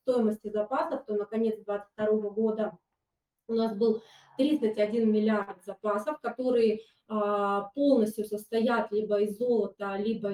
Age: 20-39